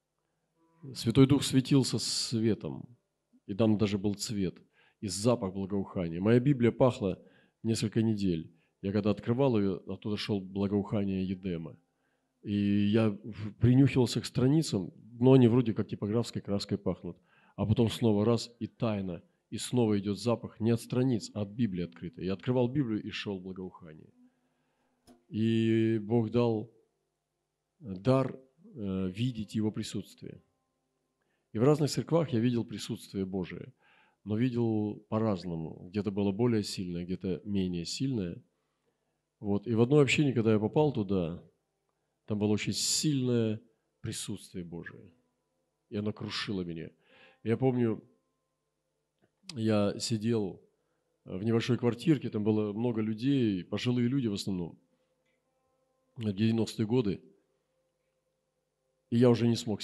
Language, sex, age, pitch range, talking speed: Russian, male, 40-59, 100-125 Hz, 125 wpm